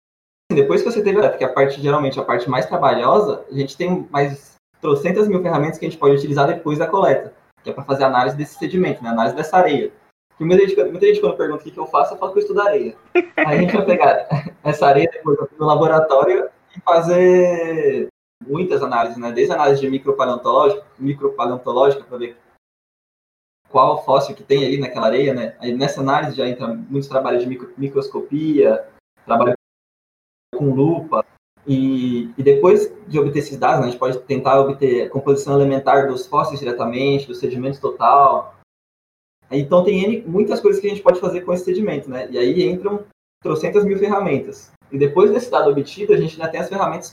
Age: 20-39